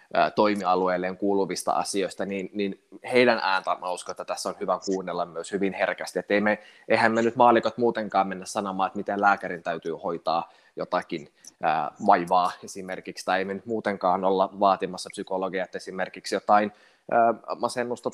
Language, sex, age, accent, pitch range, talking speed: Finnish, male, 20-39, native, 95-115 Hz, 140 wpm